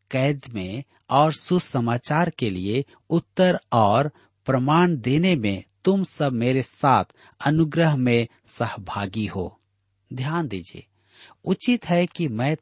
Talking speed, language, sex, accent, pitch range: 120 wpm, Hindi, male, native, 110-150 Hz